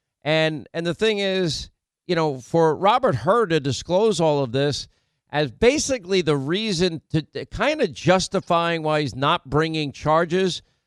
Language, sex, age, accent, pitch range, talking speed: English, male, 50-69, American, 140-175 Hz, 160 wpm